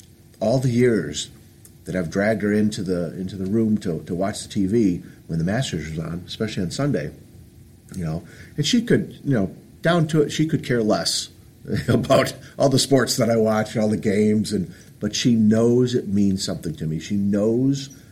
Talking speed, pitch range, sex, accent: 200 wpm, 100-150 Hz, male, American